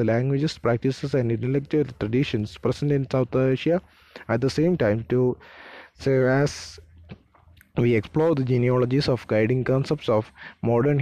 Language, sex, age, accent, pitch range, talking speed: English, male, 20-39, Indian, 120-140 Hz, 140 wpm